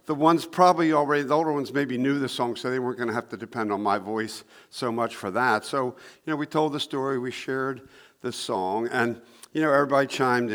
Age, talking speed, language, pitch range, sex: 60-79, 240 wpm, English, 125-160 Hz, male